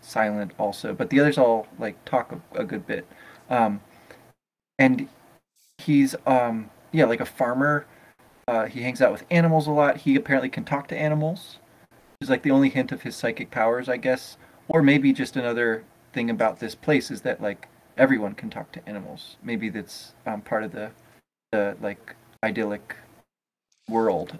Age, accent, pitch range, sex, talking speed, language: 20-39, American, 110-145 Hz, male, 175 wpm, English